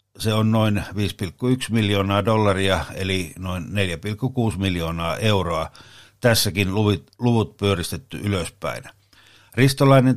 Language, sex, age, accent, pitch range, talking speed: Finnish, male, 60-79, native, 95-110 Hz, 100 wpm